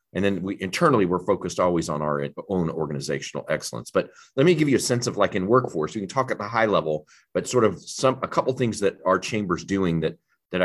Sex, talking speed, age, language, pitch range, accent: male, 250 wpm, 40-59, English, 75-100 Hz, American